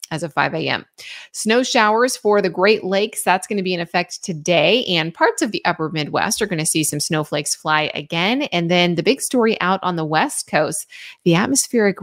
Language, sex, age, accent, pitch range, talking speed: English, female, 30-49, American, 165-225 Hz, 205 wpm